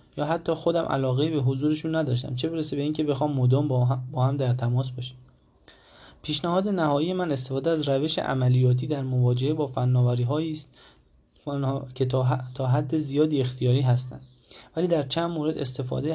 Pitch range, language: 130-155 Hz, Persian